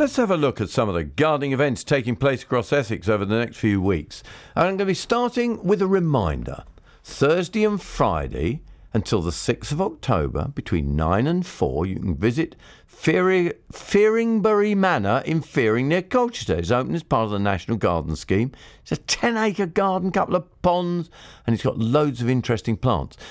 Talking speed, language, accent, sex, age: 195 wpm, English, British, male, 50-69